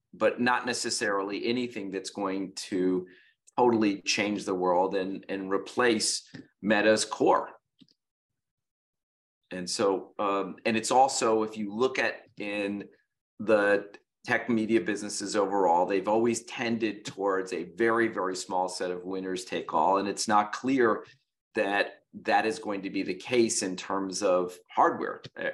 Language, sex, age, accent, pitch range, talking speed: English, male, 40-59, American, 95-110 Hz, 145 wpm